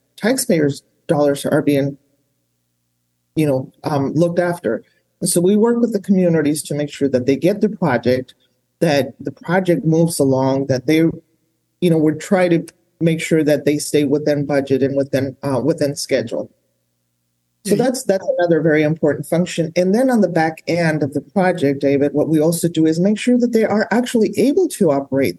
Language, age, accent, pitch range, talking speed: English, 30-49, American, 140-180 Hz, 185 wpm